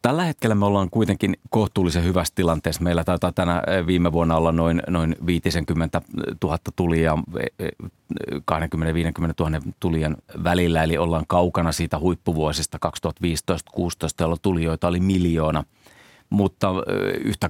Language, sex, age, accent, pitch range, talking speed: Finnish, male, 30-49, native, 80-95 Hz, 125 wpm